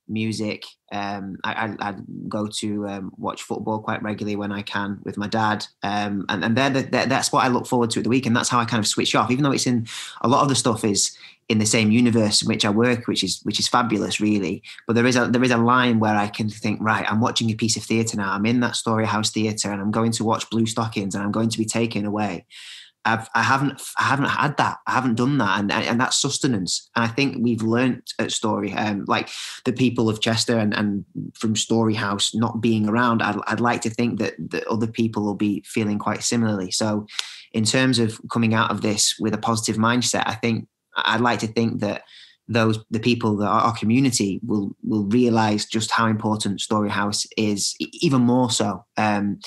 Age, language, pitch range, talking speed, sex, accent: 20-39, English, 105-120 Hz, 235 wpm, male, British